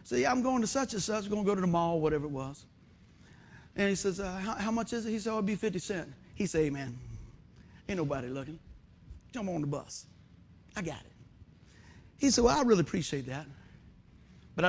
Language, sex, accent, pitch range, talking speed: English, male, American, 135-200 Hz, 225 wpm